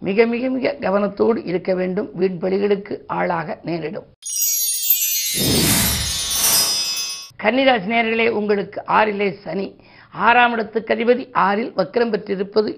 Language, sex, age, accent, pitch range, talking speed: Tamil, female, 50-69, native, 195-235 Hz, 100 wpm